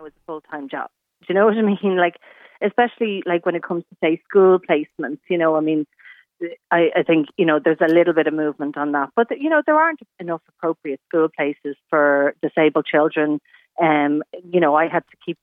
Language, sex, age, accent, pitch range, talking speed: English, female, 40-59, Irish, 150-190 Hz, 225 wpm